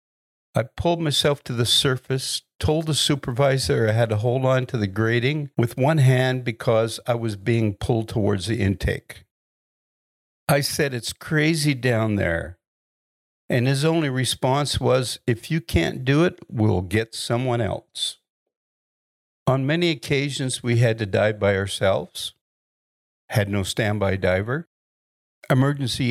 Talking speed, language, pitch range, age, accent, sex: 140 wpm, English, 105-135 Hz, 60-79, American, male